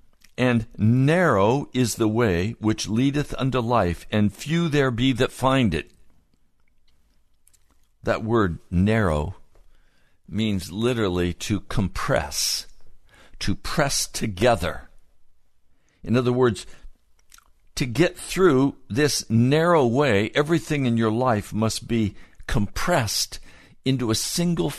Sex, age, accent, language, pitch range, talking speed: male, 60-79, American, English, 90-125 Hz, 110 wpm